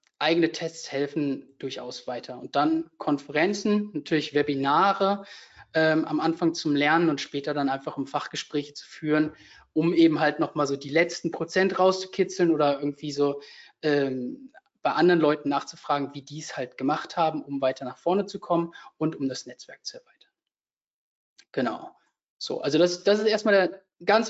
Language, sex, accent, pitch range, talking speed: German, male, German, 150-190 Hz, 165 wpm